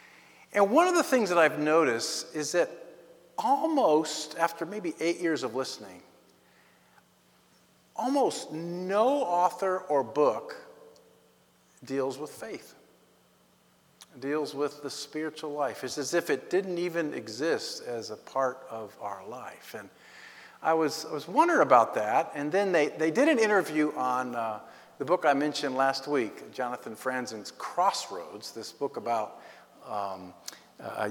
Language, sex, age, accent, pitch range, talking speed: English, male, 50-69, American, 140-185 Hz, 145 wpm